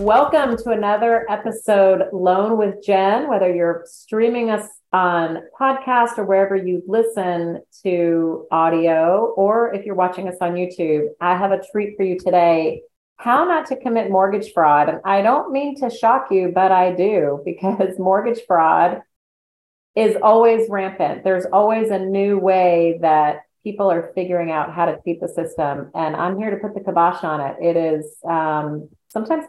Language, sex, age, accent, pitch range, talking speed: English, female, 40-59, American, 170-210 Hz, 170 wpm